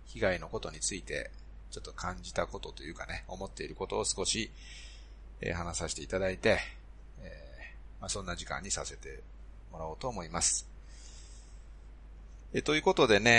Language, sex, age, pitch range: Japanese, male, 30-49, 75-115 Hz